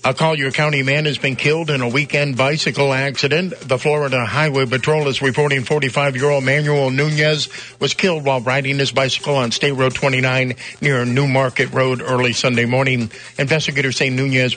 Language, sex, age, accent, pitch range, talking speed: English, male, 50-69, American, 130-150 Hz, 170 wpm